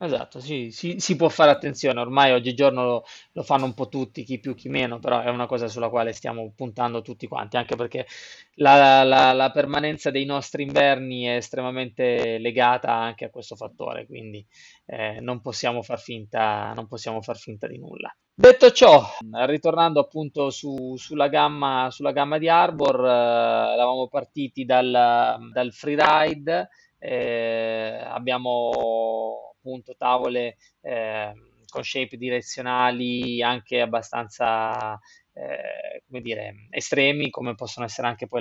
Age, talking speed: 20-39, 140 wpm